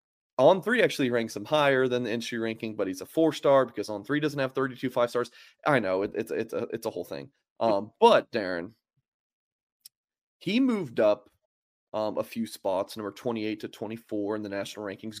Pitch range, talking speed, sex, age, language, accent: 115-165 Hz, 200 wpm, male, 30-49, English, American